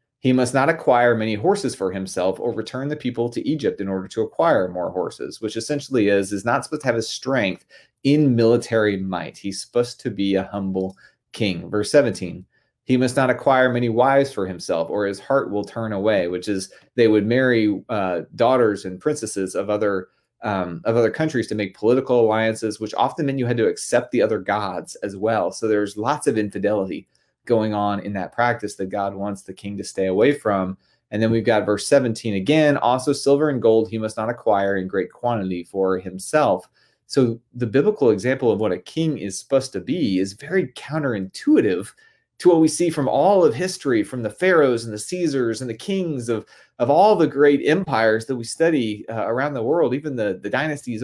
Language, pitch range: English, 100-135 Hz